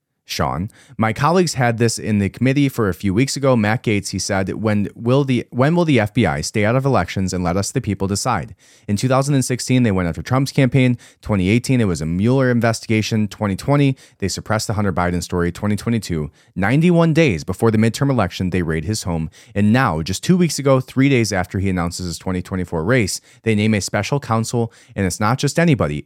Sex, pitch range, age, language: male, 95-135 Hz, 30-49, English